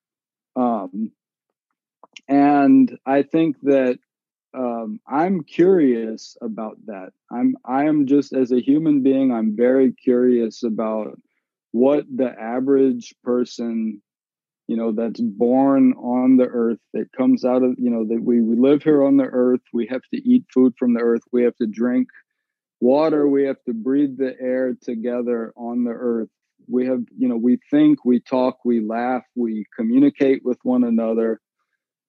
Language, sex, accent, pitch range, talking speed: English, male, American, 120-155 Hz, 160 wpm